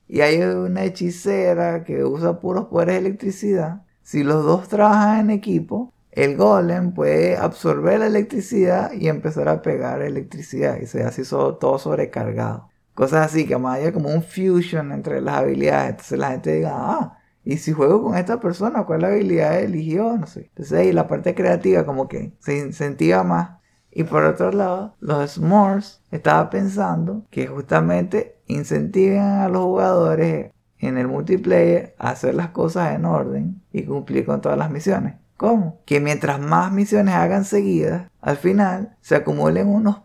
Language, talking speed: Spanish, 170 wpm